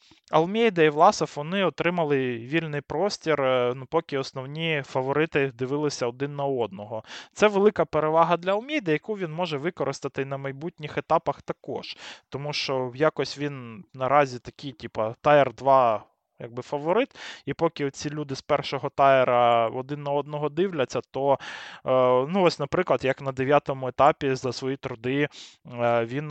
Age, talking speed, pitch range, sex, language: 20-39, 140 wpm, 130-150 Hz, male, Ukrainian